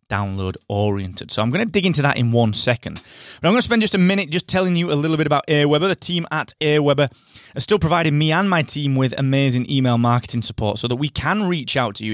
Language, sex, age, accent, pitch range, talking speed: English, male, 20-39, British, 110-150 Hz, 245 wpm